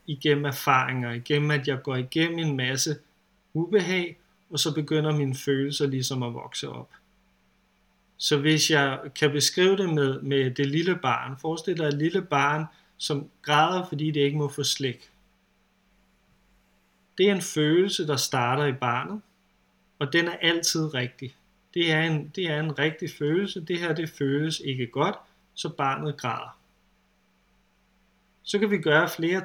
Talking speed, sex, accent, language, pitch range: 155 wpm, male, native, Danish, 140-165 Hz